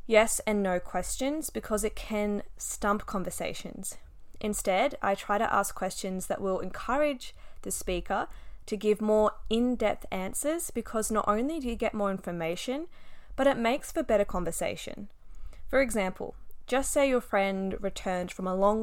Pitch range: 190-250 Hz